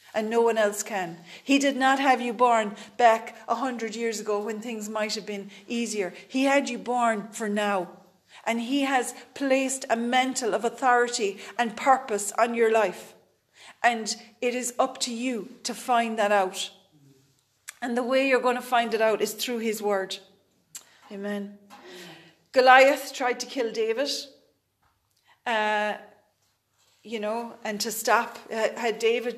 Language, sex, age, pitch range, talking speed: English, female, 40-59, 210-245 Hz, 160 wpm